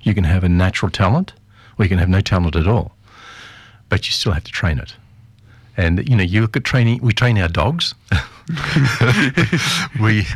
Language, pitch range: English, 85-115 Hz